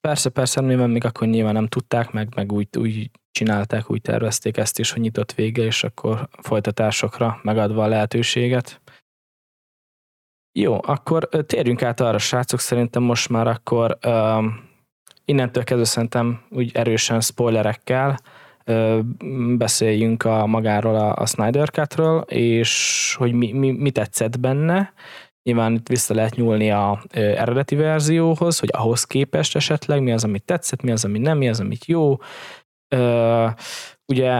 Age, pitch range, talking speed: 20-39, 115-135 Hz, 145 wpm